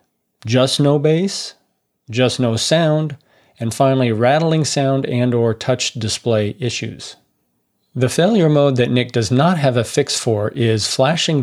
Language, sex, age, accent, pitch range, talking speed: English, male, 40-59, American, 115-145 Hz, 145 wpm